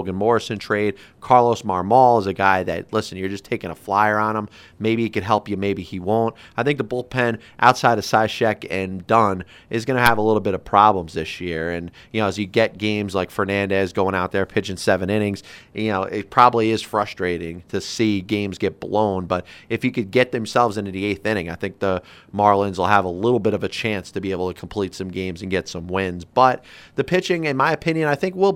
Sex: male